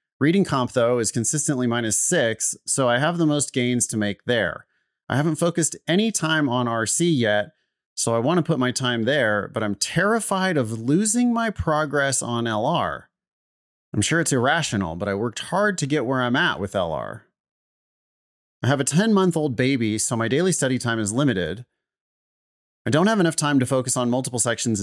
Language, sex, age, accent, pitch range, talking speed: English, male, 30-49, American, 115-155 Hz, 190 wpm